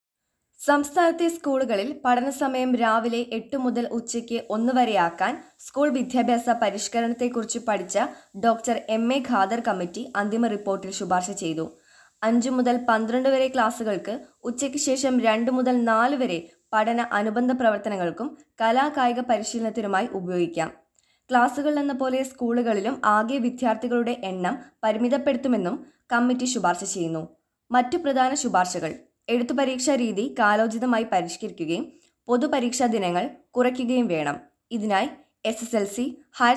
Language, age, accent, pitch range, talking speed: Malayalam, 20-39, native, 205-255 Hz, 110 wpm